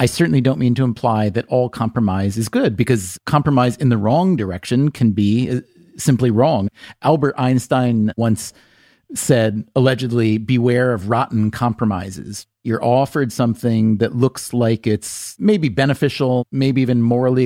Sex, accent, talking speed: male, American, 145 wpm